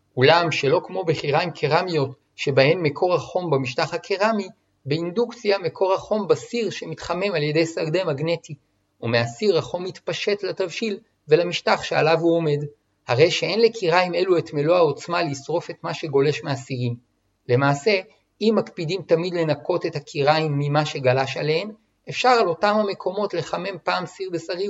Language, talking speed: Hebrew, 140 wpm